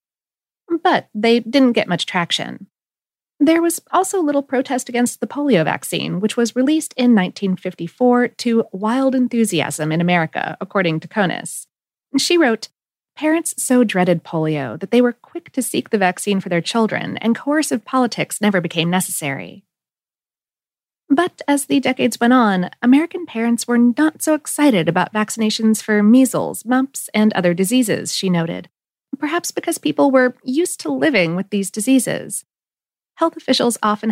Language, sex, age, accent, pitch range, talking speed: English, female, 30-49, American, 185-270 Hz, 150 wpm